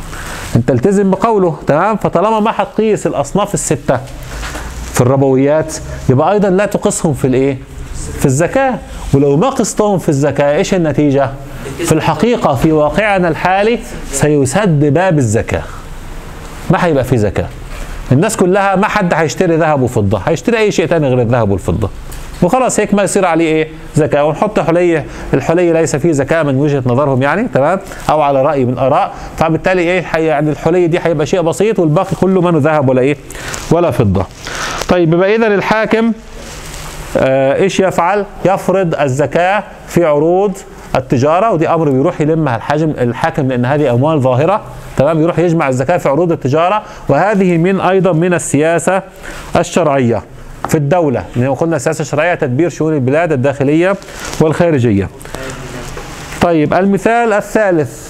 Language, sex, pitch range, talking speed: Arabic, male, 140-190 Hz, 145 wpm